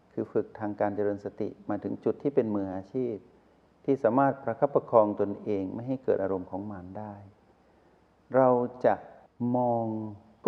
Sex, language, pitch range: male, Thai, 95-120 Hz